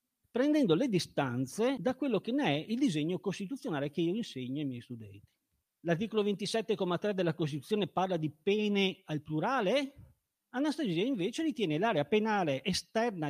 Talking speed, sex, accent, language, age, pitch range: 145 wpm, male, native, Italian, 40-59, 160-255 Hz